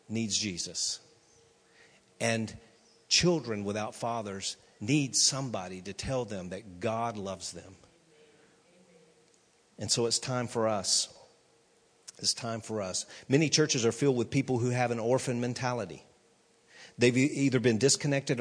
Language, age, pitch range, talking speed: English, 50-69, 105-130 Hz, 130 wpm